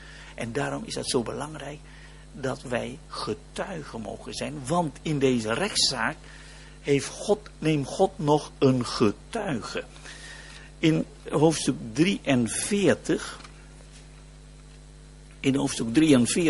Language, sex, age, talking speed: Danish, male, 60-79, 100 wpm